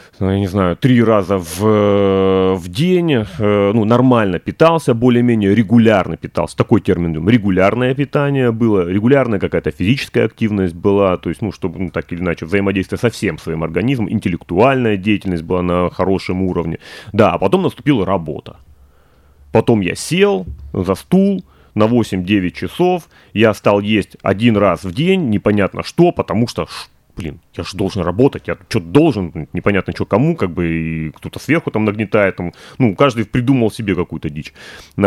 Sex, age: male, 30-49